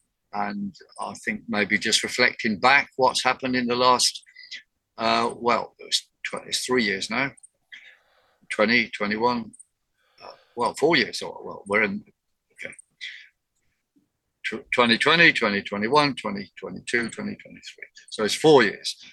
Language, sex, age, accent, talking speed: English, male, 50-69, British, 130 wpm